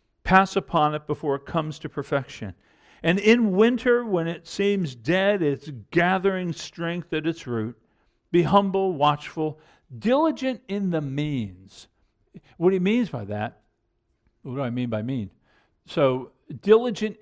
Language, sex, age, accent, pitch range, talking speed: English, male, 50-69, American, 140-195 Hz, 145 wpm